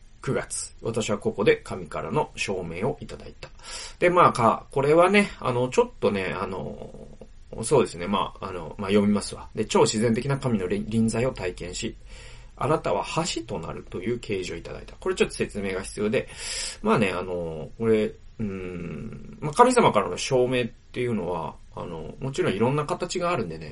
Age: 30-49